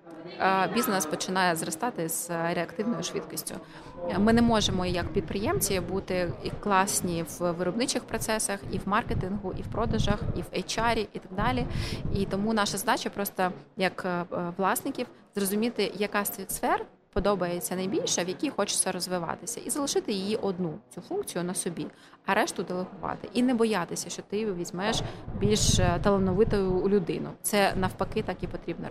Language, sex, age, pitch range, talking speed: Ukrainian, female, 20-39, 180-220 Hz, 145 wpm